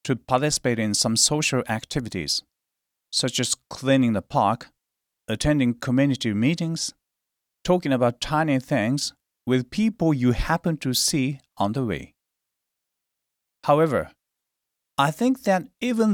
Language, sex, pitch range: Japanese, male, 125-170 Hz